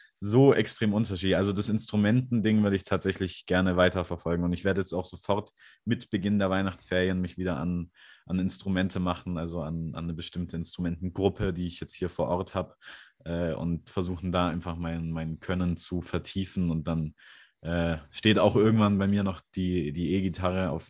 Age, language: 30-49, German